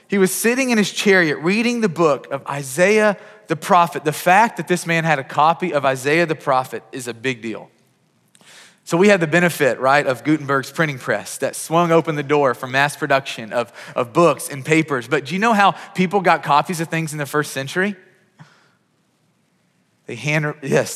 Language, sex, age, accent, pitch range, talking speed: English, male, 30-49, American, 125-175 Hz, 200 wpm